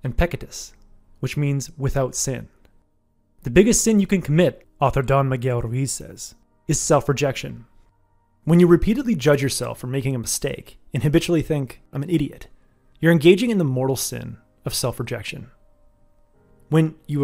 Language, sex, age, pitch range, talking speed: English, male, 30-49, 125-170 Hz, 150 wpm